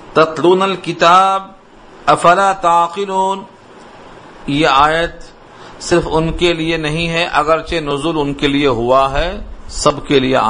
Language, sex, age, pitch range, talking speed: Urdu, male, 50-69, 145-180 Hz, 125 wpm